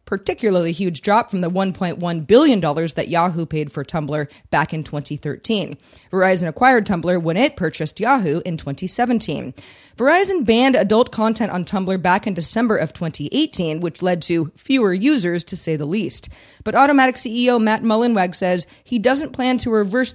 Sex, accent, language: female, American, English